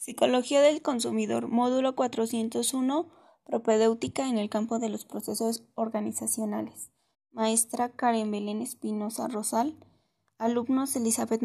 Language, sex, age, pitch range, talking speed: Spanish, female, 20-39, 220-245 Hz, 105 wpm